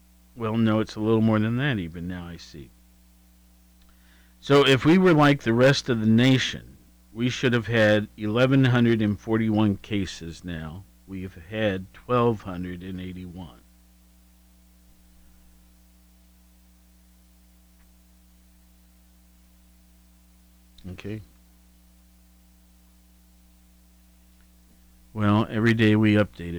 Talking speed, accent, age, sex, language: 90 wpm, American, 50-69, male, English